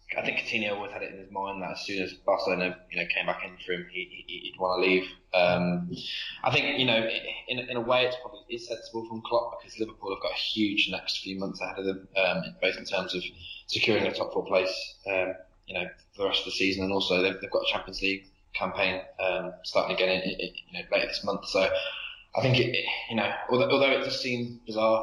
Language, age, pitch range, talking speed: English, 20-39, 95-115 Hz, 230 wpm